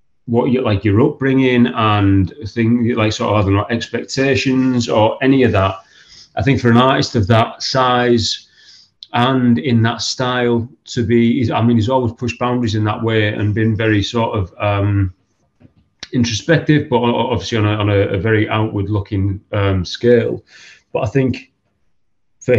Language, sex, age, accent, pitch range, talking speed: English, male, 30-49, British, 105-125 Hz, 155 wpm